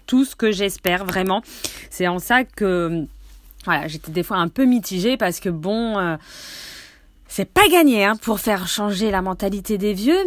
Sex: female